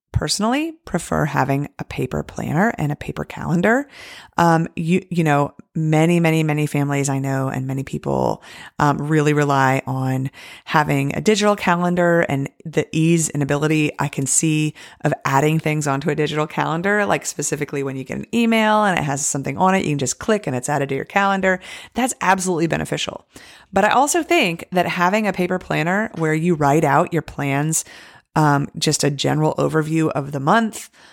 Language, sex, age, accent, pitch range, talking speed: English, female, 30-49, American, 145-180 Hz, 185 wpm